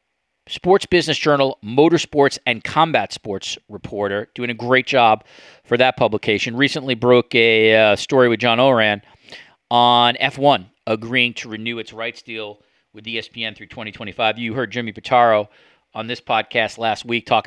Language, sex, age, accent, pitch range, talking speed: English, male, 40-59, American, 110-130 Hz, 155 wpm